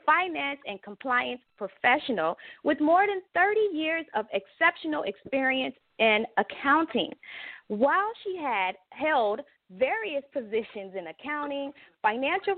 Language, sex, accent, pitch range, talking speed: English, female, American, 215-325 Hz, 110 wpm